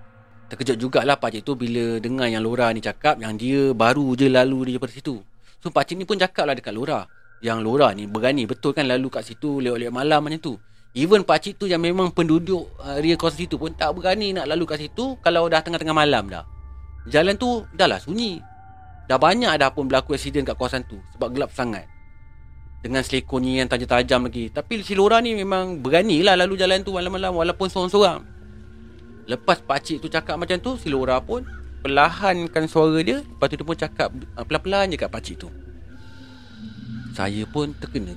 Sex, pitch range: male, 110-155 Hz